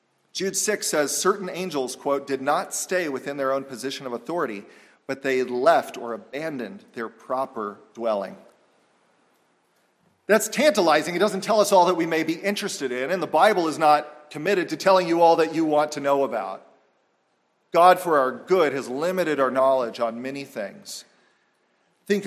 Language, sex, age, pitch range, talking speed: English, male, 40-59, 140-190 Hz, 170 wpm